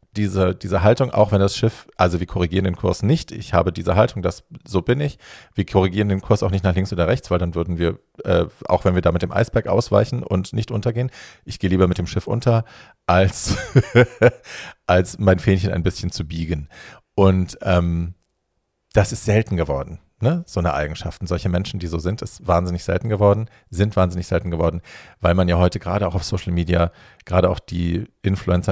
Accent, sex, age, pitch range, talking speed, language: German, male, 40-59, 85-100 Hz, 205 wpm, German